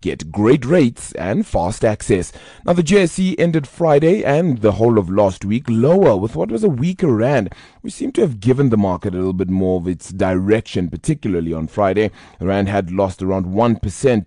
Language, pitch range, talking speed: English, 90-120 Hz, 200 wpm